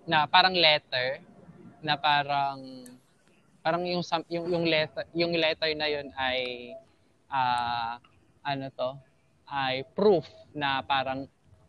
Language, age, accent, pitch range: Filipino, 20-39, native, 120-150 Hz